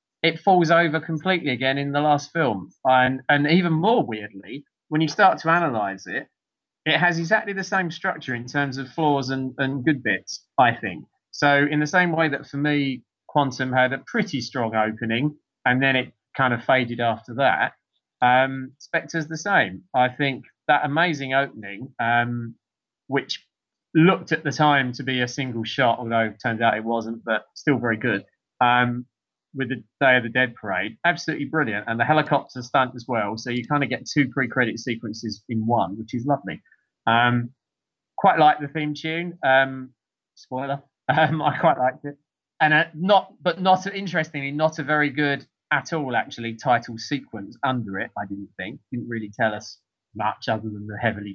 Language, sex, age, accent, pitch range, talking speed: English, male, 20-39, British, 115-150 Hz, 185 wpm